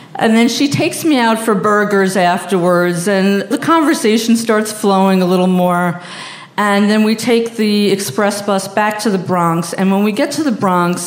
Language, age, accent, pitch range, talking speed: English, 50-69, American, 170-225 Hz, 190 wpm